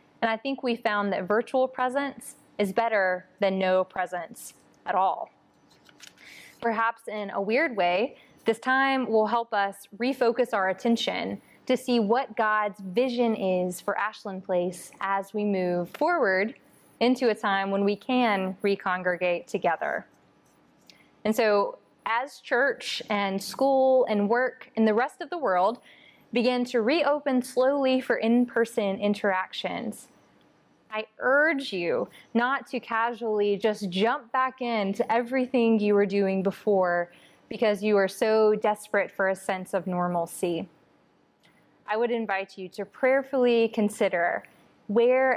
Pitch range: 195-245 Hz